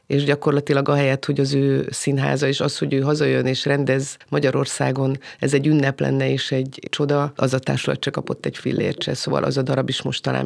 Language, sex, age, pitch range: Hungarian, female, 30-49, 135-155 Hz